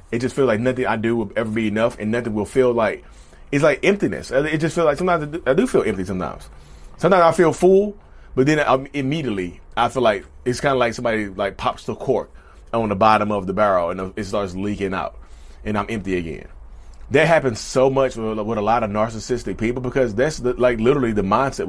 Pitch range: 100-140 Hz